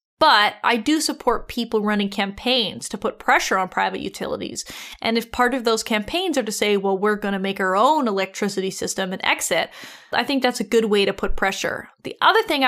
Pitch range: 205-255 Hz